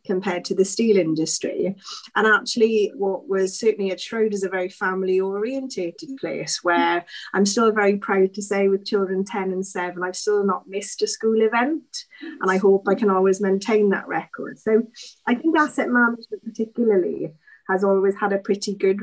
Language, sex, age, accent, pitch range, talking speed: English, female, 30-49, British, 190-225 Hz, 185 wpm